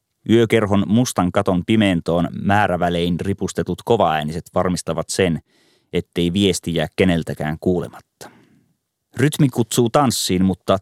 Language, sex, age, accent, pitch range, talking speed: Finnish, male, 30-49, native, 85-100 Hz, 100 wpm